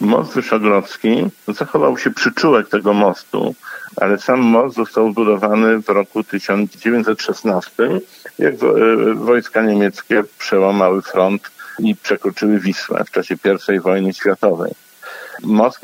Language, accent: Polish, native